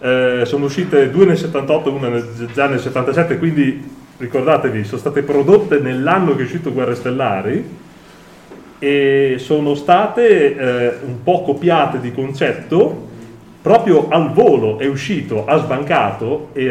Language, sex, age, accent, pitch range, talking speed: Italian, male, 30-49, native, 130-170 Hz, 140 wpm